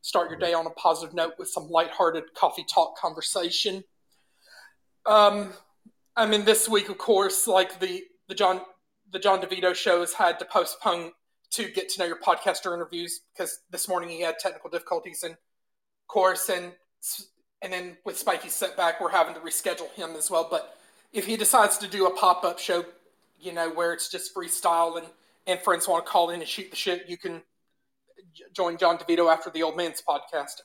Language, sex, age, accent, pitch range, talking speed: English, male, 30-49, American, 170-190 Hz, 190 wpm